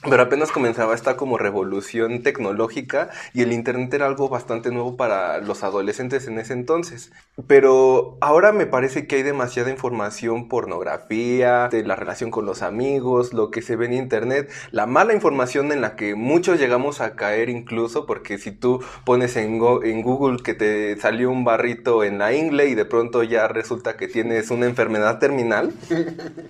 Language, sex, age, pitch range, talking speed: Spanish, male, 20-39, 115-145 Hz, 175 wpm